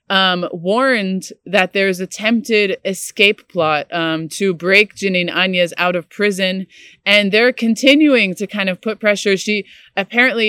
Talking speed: 145 wpm